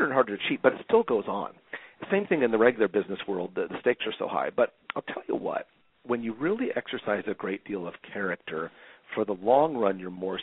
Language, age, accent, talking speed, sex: English, 40-59, American, 240 wpm, male